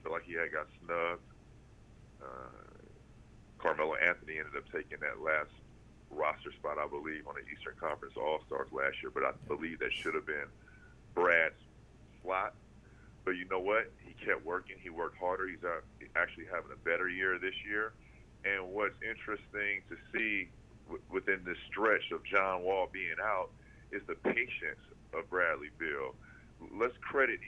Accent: American